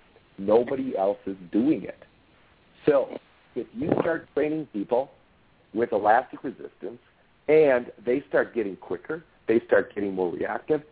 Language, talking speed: English, 130 wpm